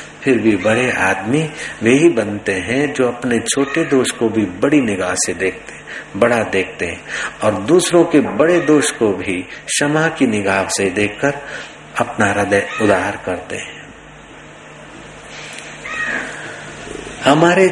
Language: Hindi